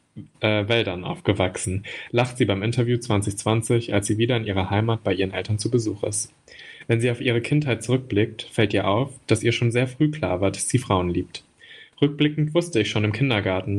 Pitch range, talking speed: 100-120 Hz, 200 wpm